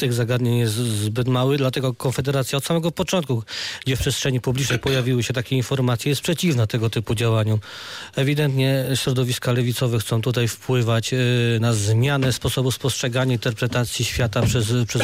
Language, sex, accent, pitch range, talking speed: Polish, male, native, 120-135 Hz, 145 wpm